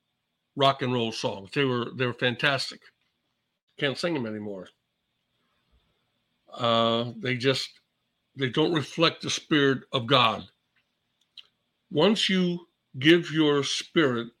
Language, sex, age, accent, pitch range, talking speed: English, male, 60-79, American, 120-155 Hz, 115 wpm